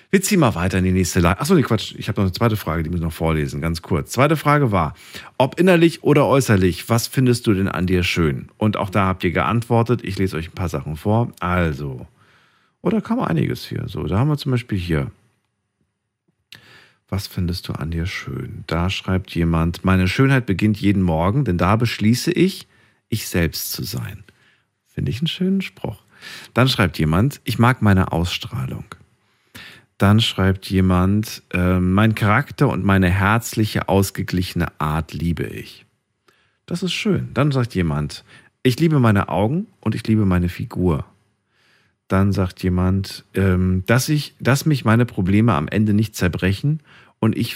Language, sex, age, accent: German, male, 50-69, German